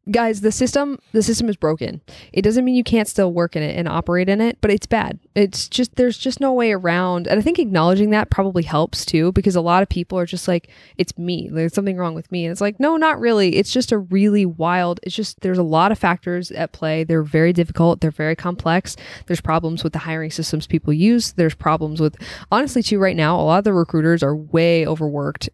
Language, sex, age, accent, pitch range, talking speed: English, female, 20-39, American, 155-185 Hz, 240 wpm